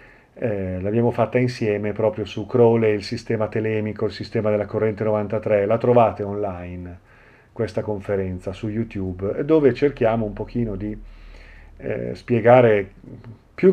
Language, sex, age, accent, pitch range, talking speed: Italian, male, 40-59, native, 105-125 Hz, 130 wpm